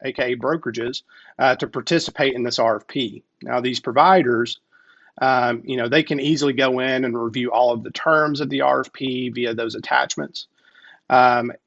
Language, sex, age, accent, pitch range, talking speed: English, male, 40-59, American, 125-150 Hz, 165 wpm